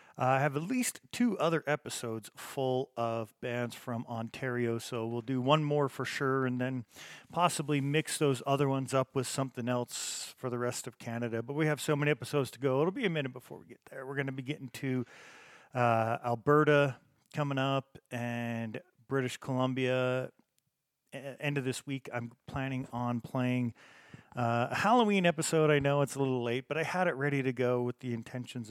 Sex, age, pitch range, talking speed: male, 40-59, 120-145 Hz, 195 wpm